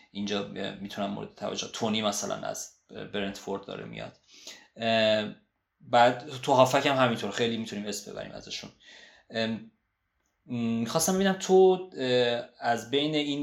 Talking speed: 110 wpm